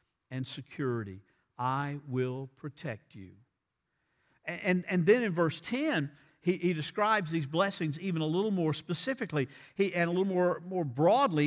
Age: 50-69